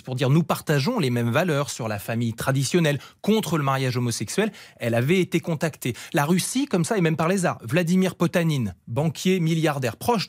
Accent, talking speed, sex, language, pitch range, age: French, 190 wpm, male, French, 130-185 Hz, 30-49